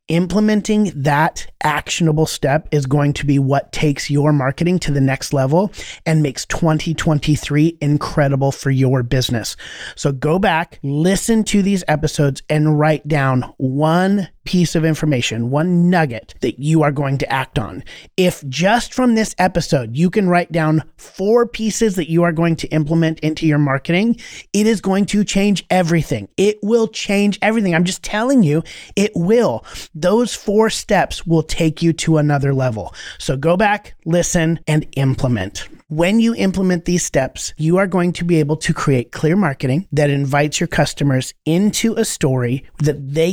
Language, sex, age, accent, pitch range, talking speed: English, male, 30-49, American, 140-180 Hz, 170 wpm